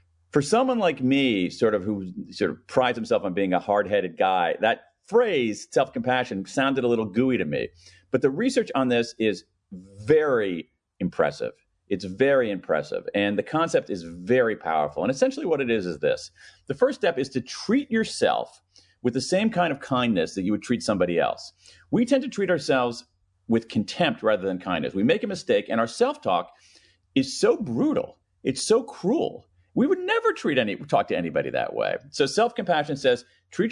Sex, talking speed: male, 185 wpm